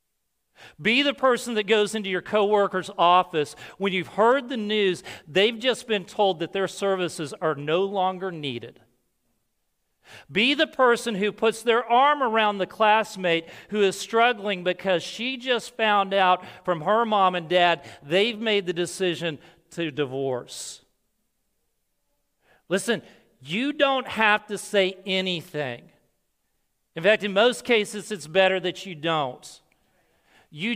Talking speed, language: 140 wpm, English